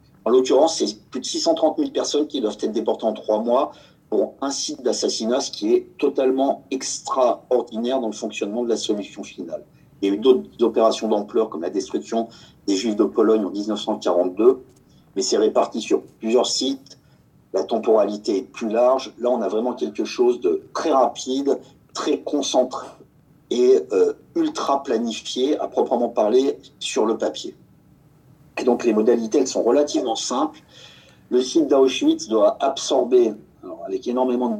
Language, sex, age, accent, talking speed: French, male, 50-69, French, 165 wpm